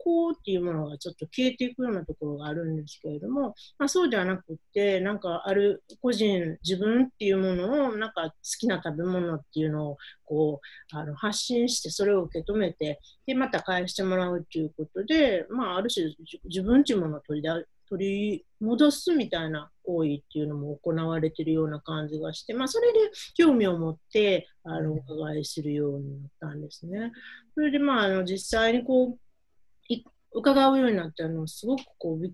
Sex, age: female, 40-59